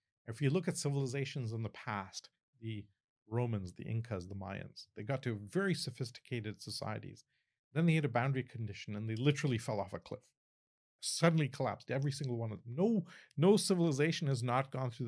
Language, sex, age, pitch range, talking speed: English, male, 40-59, 110-140 Hz, 185 wpm